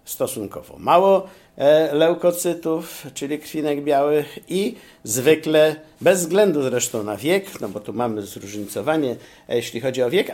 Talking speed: 130 wpm